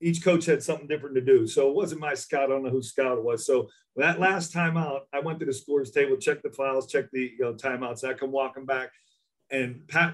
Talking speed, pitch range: 260 wpm, 130-180 Hz